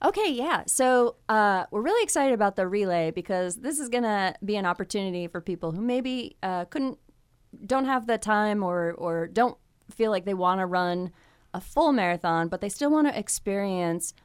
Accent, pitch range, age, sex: American, 170-215 Hz, 20-39, female